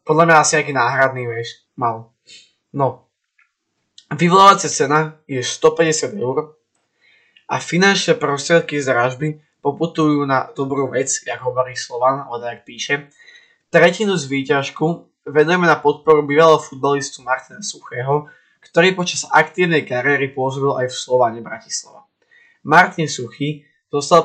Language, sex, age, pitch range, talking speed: Slovak, male, 20-39, 130-155 Hz, 120 wpm